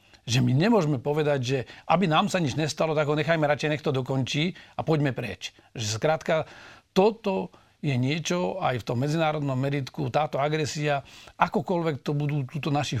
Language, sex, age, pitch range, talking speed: Slovak, male, 40-59, 130-160 Hz, 170 wpm